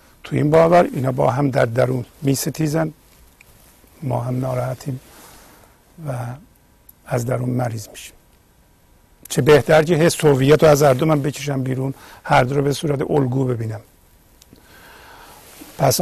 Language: Persian